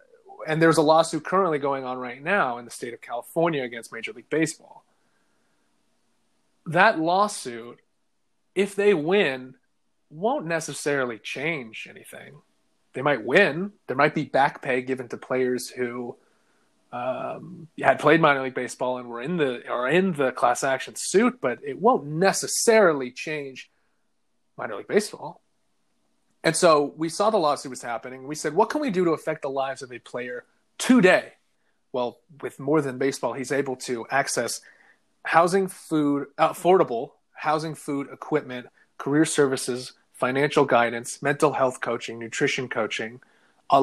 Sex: male